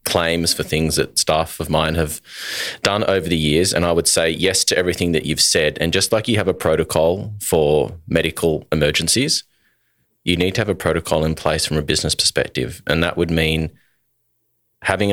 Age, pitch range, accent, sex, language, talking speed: 30-49, 80-90 Hz, Australian, male, English, 195 wpm